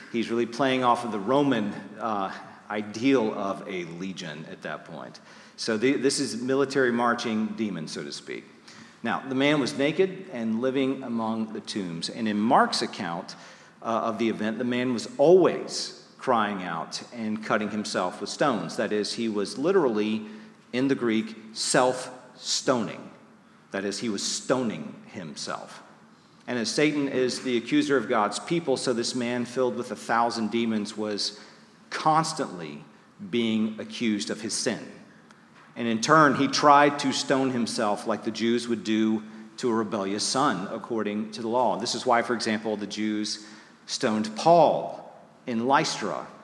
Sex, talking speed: male, 160 wpm